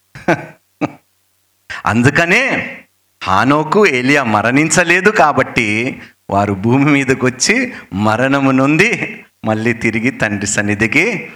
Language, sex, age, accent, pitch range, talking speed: Telugu, male, 50-69, native, 105-160 Hz, 80 wpm